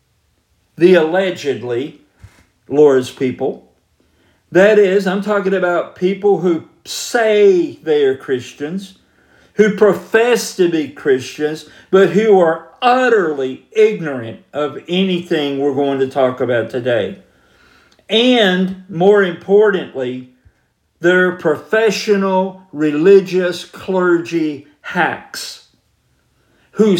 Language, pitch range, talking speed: English, 150-200 Hz, 95 wpm